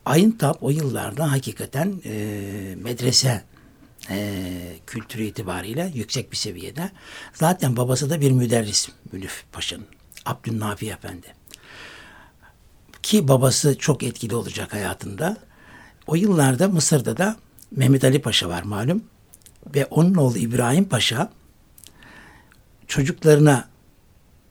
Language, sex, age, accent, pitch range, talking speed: Turkish, male, 60-79, native, 105-150 Hz, 105 wpm